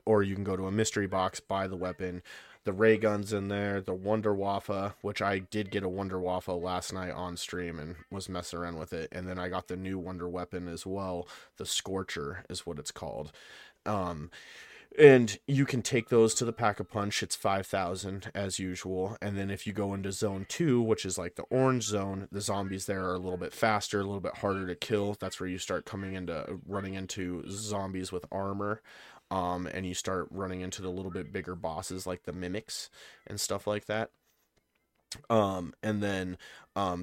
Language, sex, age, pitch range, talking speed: English, male, 30-49, 90-100 Hz, 205 wpm